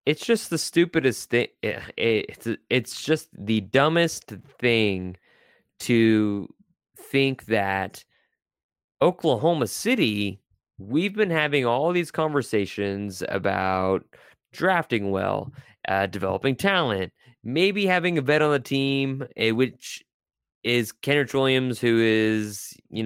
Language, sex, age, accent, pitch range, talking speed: English, male, 20-39, American, 110-140 Hz, 110 wpm